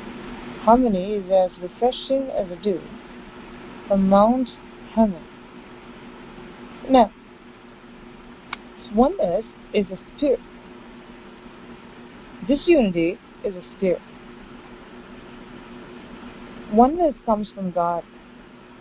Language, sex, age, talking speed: English, female, 40-59, 75 wpm